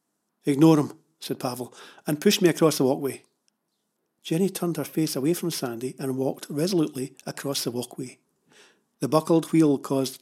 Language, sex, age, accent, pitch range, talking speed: English, male, 50-69, British, 140-175 Hz, 165 wpm